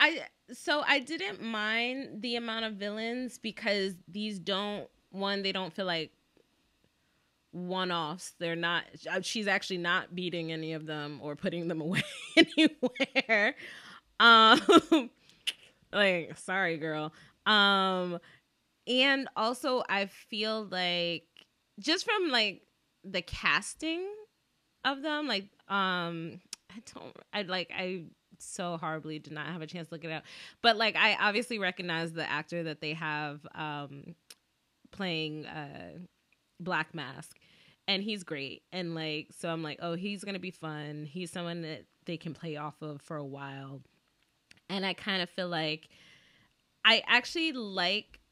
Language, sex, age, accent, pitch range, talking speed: English, female, 20-39, American, 160-215 Hz, 145 wpm